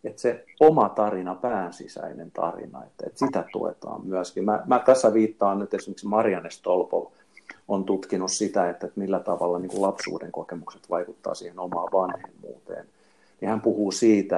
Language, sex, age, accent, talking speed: Finnish, male, 50-69, native, 135 wpm